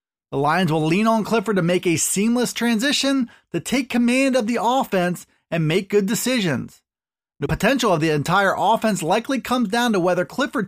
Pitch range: 180-235 Hz